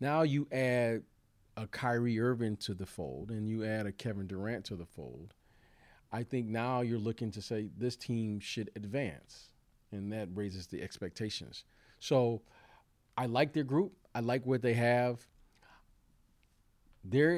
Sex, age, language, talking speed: male, 40-59, English, 155 wpm